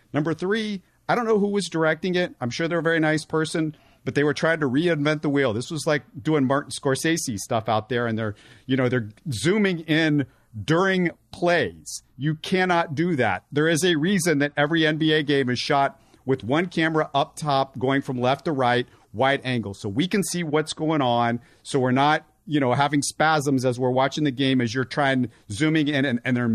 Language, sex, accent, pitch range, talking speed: English, male, American, 125-160 Hz, 215 wpm